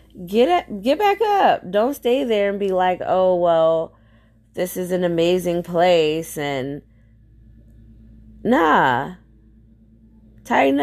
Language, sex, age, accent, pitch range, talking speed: English, female, 20-39, American, 110-185 Hz, 110 wpm